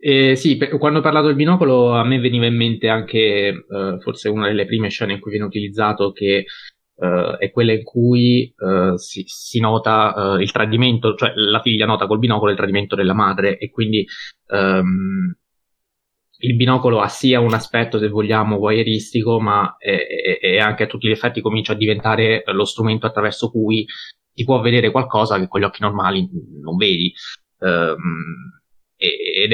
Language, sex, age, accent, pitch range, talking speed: Italian, male, 20-39, native, 105-125 Hz, 180 wpm